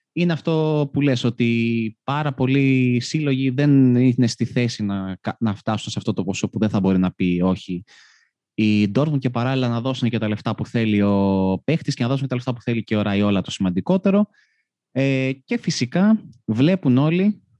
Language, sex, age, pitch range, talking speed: Greek, male, 20-39, 115-155 Hz, 190 wpm